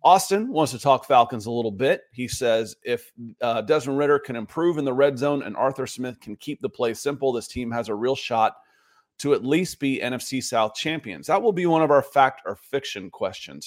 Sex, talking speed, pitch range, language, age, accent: male, 225 wpm, 115-150 Hz, English, 30-49, American